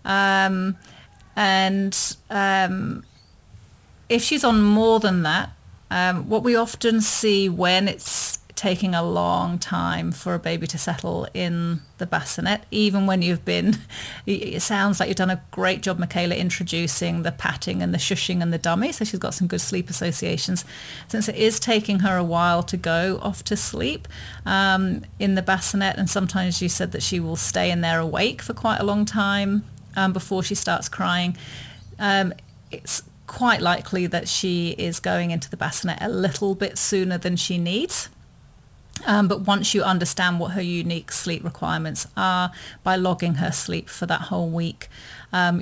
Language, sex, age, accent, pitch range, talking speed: English, female, 40-59, British, 170-195 Hz, 175 wpm